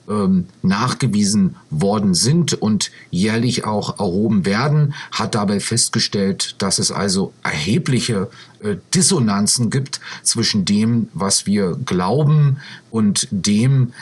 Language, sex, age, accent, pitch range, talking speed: German, male, 50-69, German, 115-170 Hz, 105 wpm